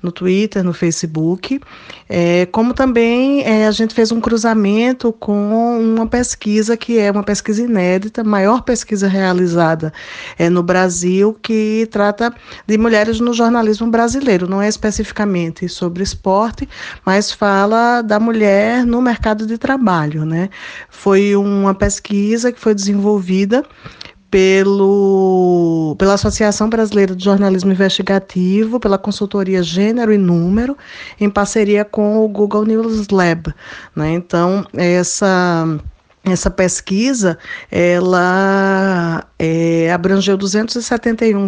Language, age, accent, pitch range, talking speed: Portuguese, 20-39, Brazilian, 190-225 Hz, 115 wpm